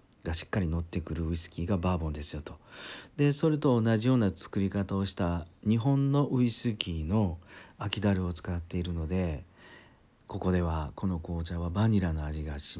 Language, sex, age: Japanese, male, 40-59